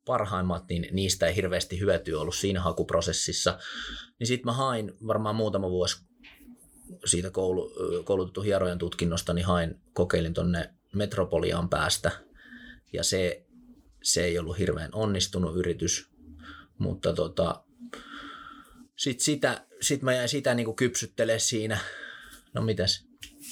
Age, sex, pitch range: 30-49, male, 90-115 Hz